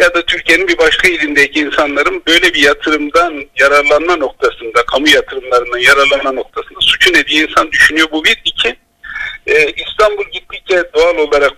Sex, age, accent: male, 50-69, native